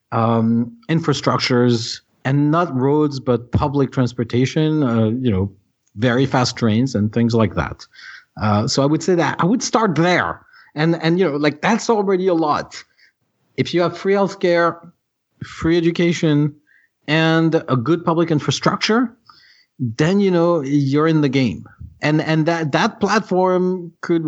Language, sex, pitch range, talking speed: English, male, 120-165 Hz, 155 wpm